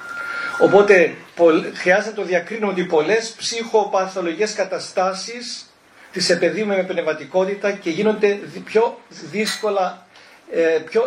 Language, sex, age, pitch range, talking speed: Greek, male, 40-59, 180-230 Hz, 100 wpm